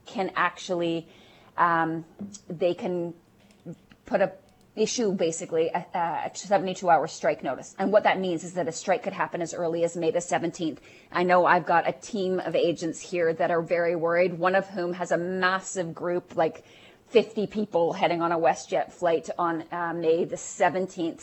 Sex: female